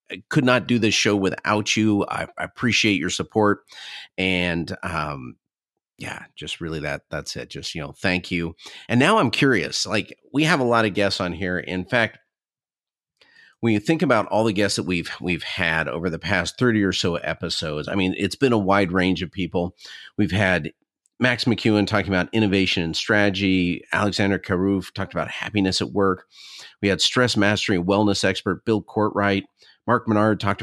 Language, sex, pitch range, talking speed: English, male, 90-110 Hz, 185 wpm